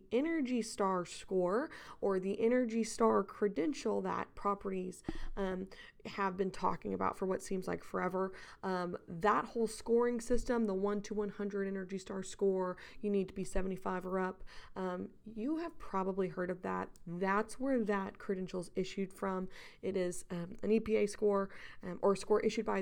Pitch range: 190-225 Hz